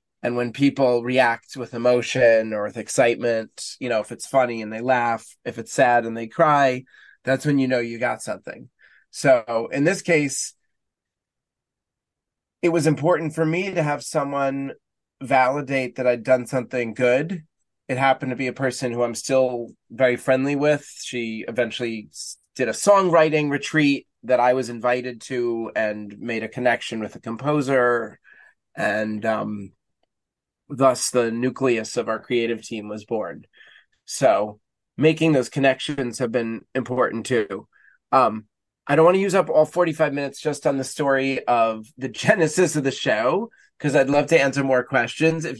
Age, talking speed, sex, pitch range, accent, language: 20-39, 165 wpm, male, 120-145 Hz, American, English